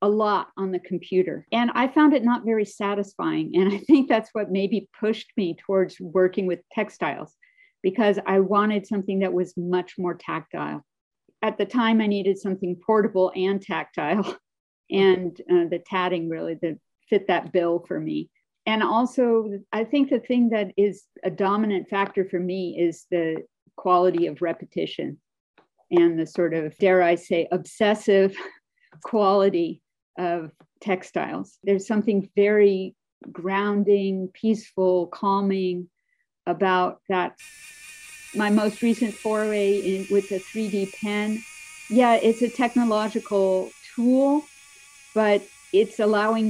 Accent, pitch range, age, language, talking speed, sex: American, 180-220 Hz, 50-69, English, 140 wpm, female